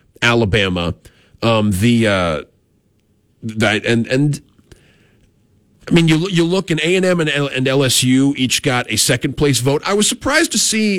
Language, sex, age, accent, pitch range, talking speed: English, male, 40-59, American, 105-135 Hz, 175 wpm